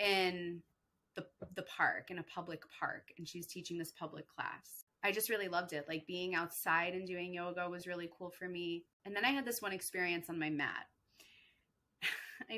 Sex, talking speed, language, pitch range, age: female, 195 wpm, English, 165-205 Hz, 20-39